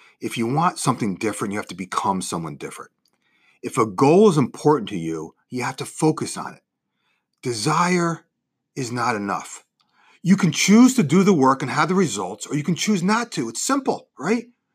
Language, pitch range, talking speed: English, 130-195 Hz, 195 wpm